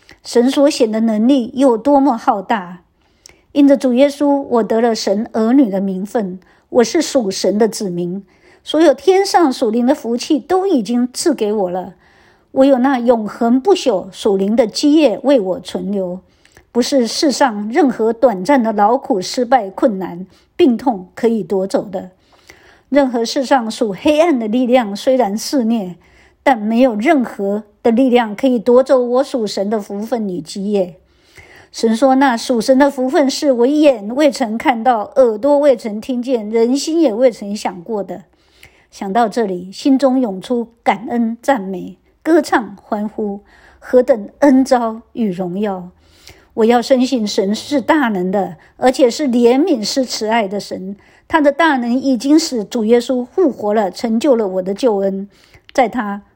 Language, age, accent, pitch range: English, 50-69, American, 205-275 Hz